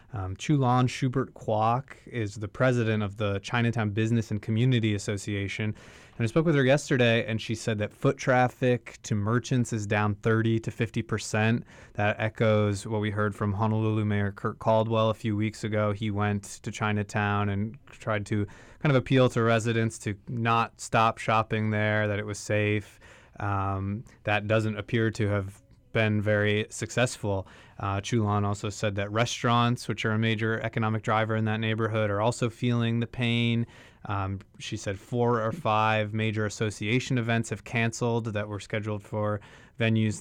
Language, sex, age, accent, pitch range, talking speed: English, male, 20-39, American, 105-115 Hz, 170 wpm